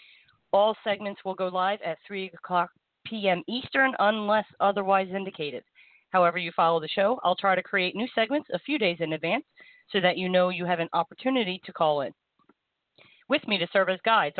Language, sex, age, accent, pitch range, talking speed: English, female, 40-59, American, 170-225 Hz, 190 wpm